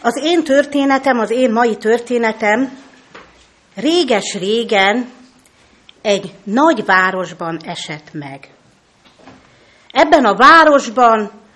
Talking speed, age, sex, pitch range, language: 85 wpm, 50-69, female, 200-280 Hz, Hungarian